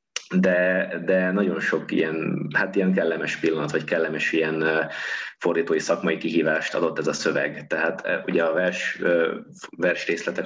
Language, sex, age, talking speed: Hungarian, male, 20-39, 145 wpm